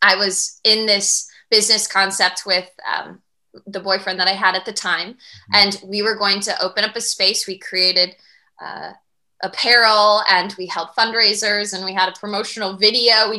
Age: 20-39